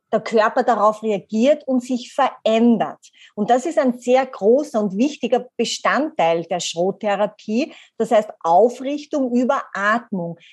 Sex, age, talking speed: female, 30-49, 130 wpm